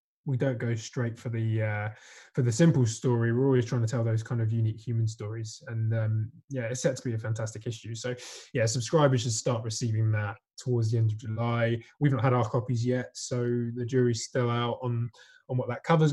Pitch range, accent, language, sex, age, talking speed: 115-130 Hz, British, English, male, 20-39, 225 wpm